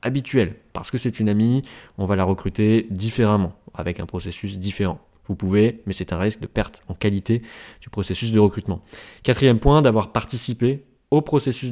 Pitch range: 100-125 Hz